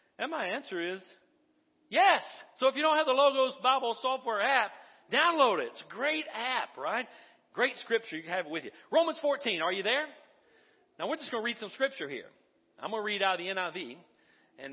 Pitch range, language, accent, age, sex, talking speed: 175-260 Hz, English, American, 40-59, male, 215 wpm